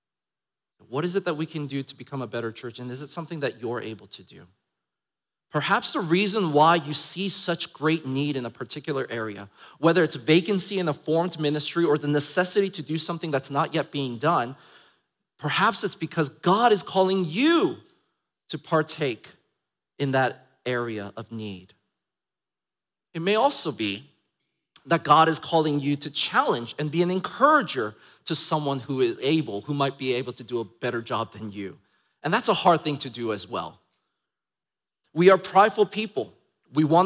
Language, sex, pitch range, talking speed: English, male, 135-180 Hz, 180 wpm